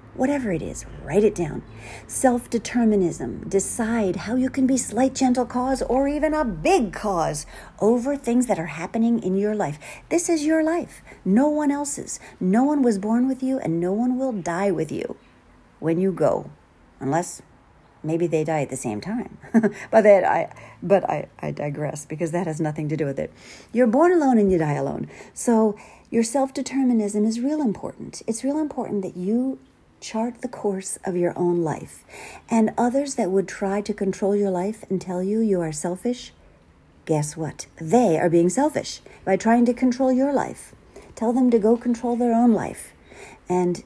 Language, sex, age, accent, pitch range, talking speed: English, female, 40-59, American, 175-245 Hz, 185 wpm